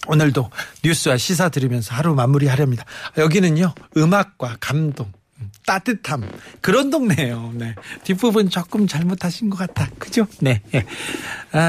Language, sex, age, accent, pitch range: Korean, male, 40-59, native, 140-200 Hz